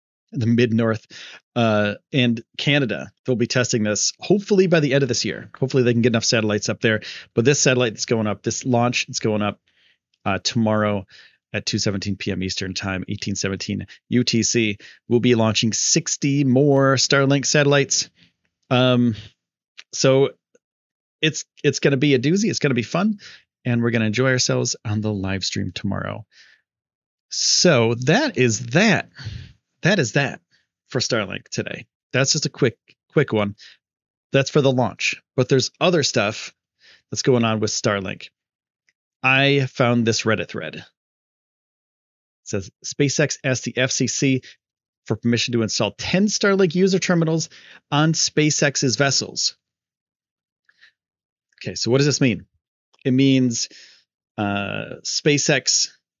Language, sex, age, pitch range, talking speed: English, male, 30-49, 110-140 Hz, 145 wpm